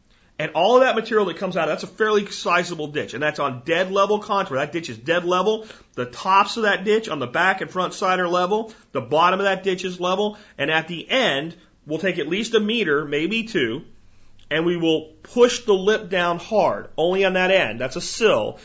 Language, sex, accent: English, male, American